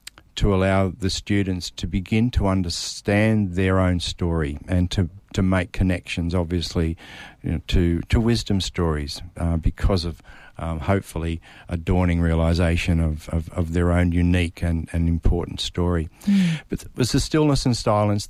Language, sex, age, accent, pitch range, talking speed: English, male, 50-69, Australian, 90-105 Hz, 155 wpm